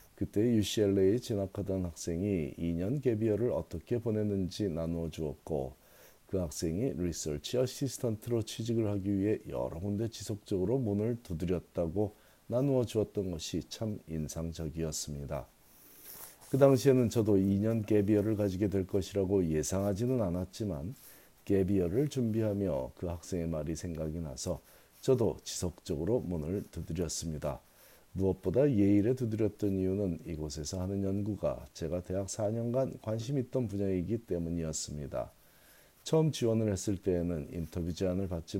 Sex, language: male, Korean